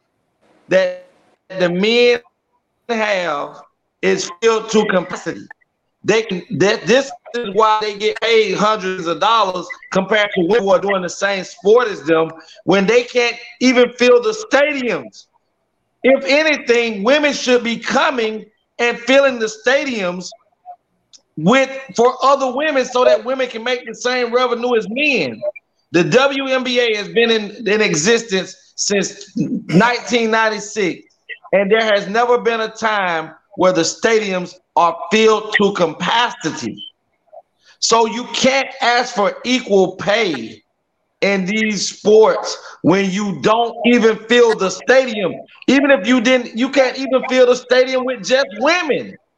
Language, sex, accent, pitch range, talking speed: English, male, American, 200-255 Hz, 140 wpm